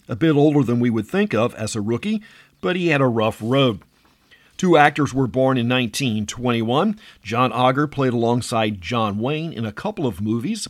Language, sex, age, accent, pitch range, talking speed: English, male, 50-69, American, 110-140 Hz, 190 wpm